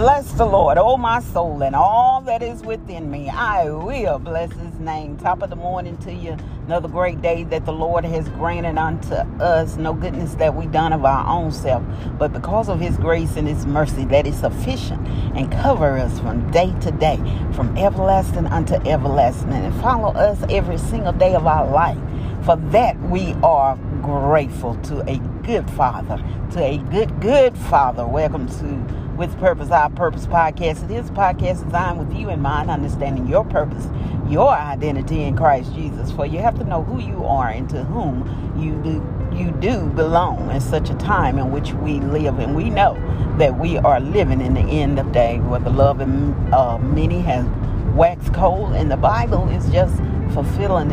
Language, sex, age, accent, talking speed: English, female, 40-59, American, 190 wpm